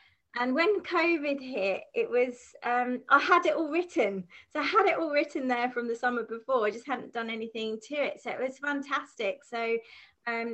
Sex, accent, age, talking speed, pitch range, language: female, British, 30-49, 205 wpm, 220-280 Hz, English